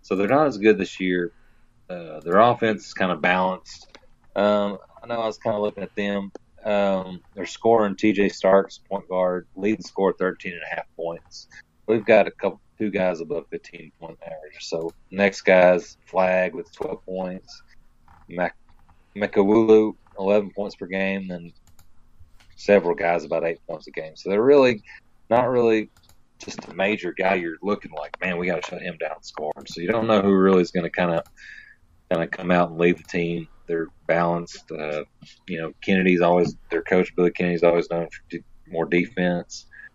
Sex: male